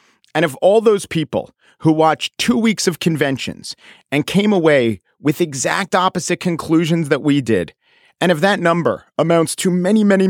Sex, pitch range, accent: male, 145-195 Hz, American